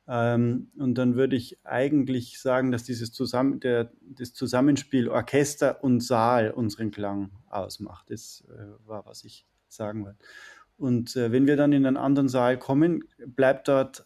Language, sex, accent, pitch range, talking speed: German, male, German, 110-135 Hz, 160 wpm